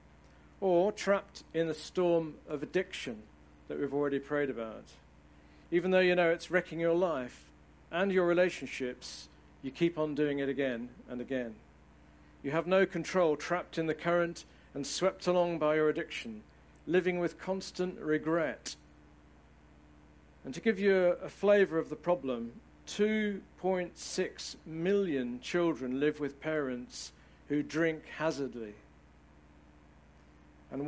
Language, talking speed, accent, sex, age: English, 135 wpm, British, male, 50-69